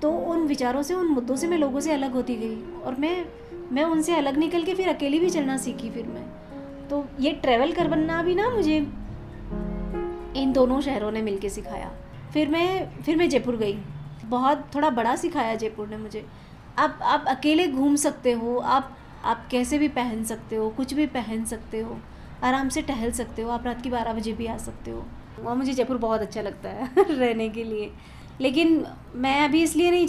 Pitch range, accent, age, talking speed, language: 230-305 Hz, native, 20-39, 200 wpm, Hindi